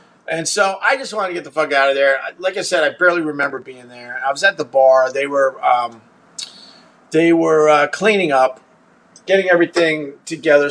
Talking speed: 200 wpm